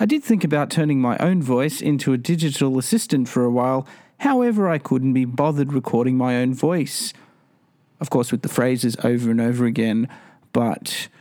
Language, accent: English, Australian